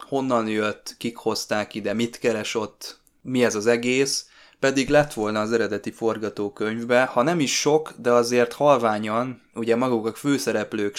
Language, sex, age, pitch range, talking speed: Hungarian, male, 20-39, 105-120 Hz, 155 wpm